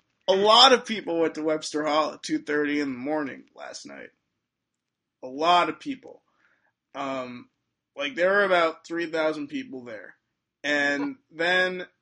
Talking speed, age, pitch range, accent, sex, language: 145 wpm, 20-39, 135-165 Hz, American, male, English